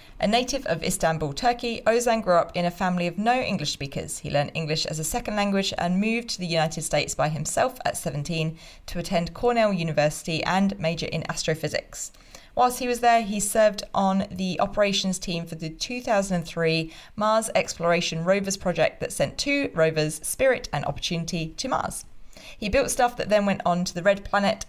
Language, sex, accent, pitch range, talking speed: English, female, British, 160-210 Hz, 185 wpm